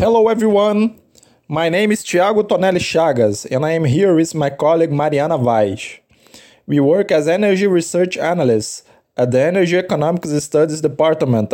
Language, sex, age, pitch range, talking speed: Portuguese, male, 20-39, 145-190 Hz, 150 wpm